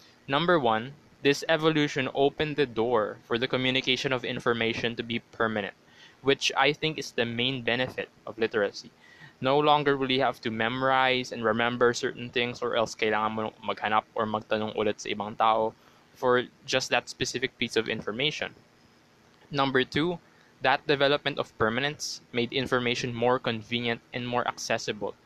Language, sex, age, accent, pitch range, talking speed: Filipino, male, 20-39, native, 115-135 Hz, 155 wpm